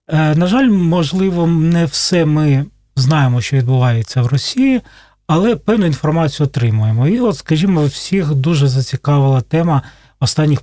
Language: Russian